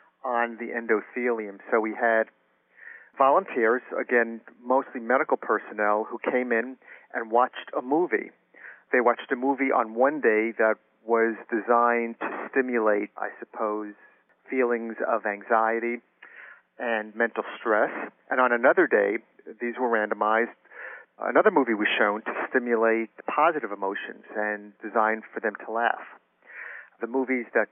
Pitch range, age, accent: 110-125 Hz, 40-59, American